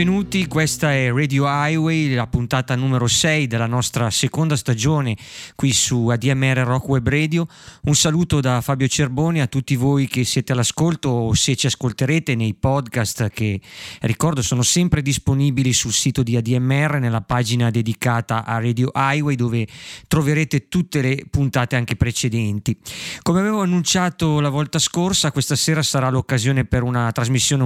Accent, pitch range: native, 120-145 Hz